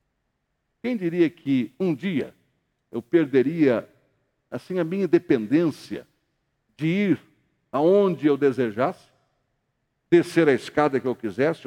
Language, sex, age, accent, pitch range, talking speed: Portuguese, male, 60-79, Brazilian, 150-220 Hz, 115 wpm